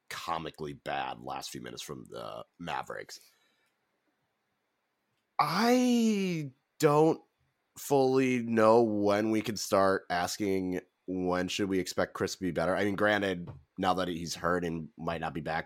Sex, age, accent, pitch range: male, 30-49, American, 90-120 Hz